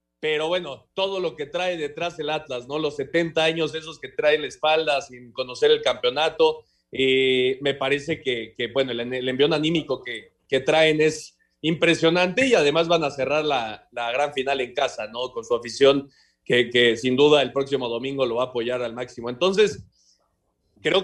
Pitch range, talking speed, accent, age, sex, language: 135-185 Hz, 190 wpm, Mexican, 30-49, male, Spanish